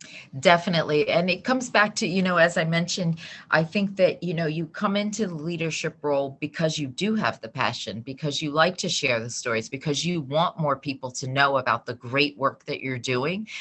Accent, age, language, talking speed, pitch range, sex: American, 30-49, English, 215 wpm, 125-160 Hz, female